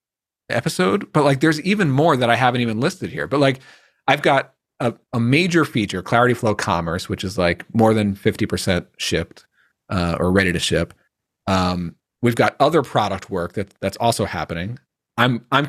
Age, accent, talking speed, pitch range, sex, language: 40-59, American, 180 wpm, 100-140 Hz, male, English